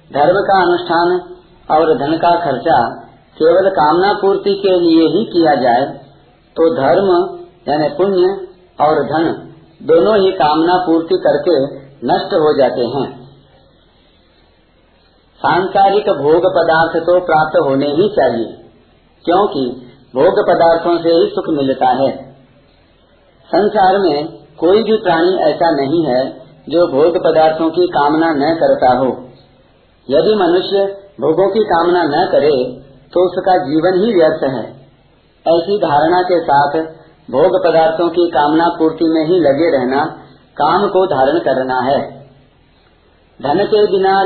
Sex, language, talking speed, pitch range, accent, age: male, Hindi, 130 wpm, 150-195 Hz, native, 50-69